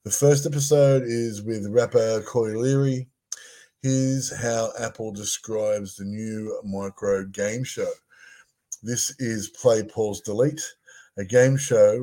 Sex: male